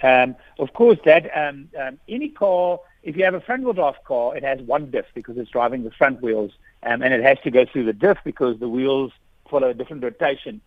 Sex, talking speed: male, 230 wpm